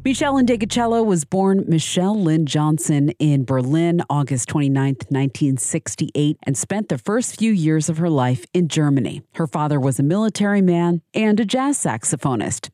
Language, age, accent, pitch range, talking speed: English, 40-59, American, 140-185 Hz, 155 wpm